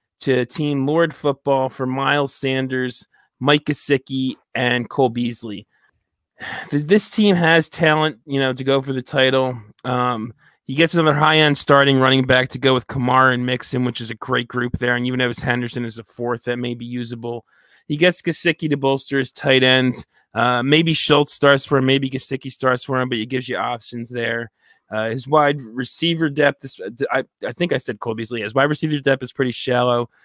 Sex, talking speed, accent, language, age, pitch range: male, 200 wpm, American, English, 20-39, 120-145 Hz